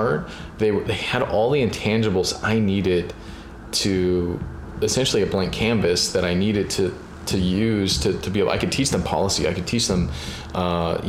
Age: 30-49